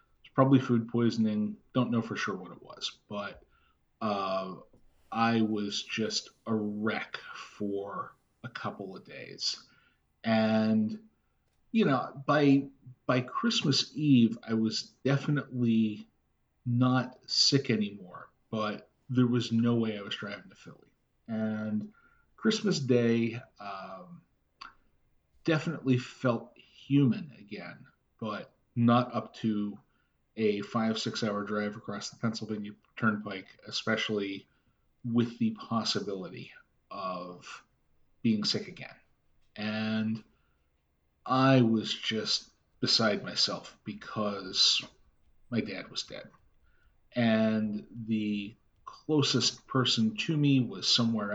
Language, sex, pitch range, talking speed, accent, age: English, male, 105-125 Hz, 110 wpm, American, 40-59